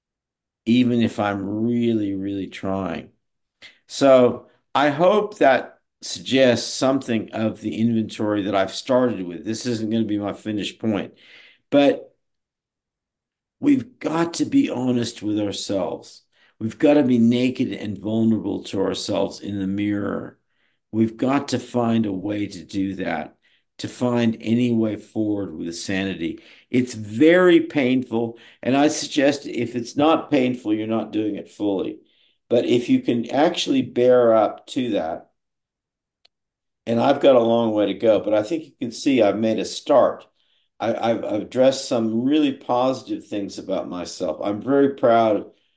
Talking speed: 150 wpm